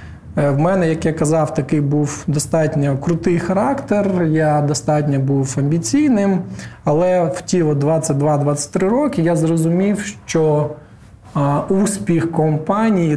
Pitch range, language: 140-170 Hz, Ukrainian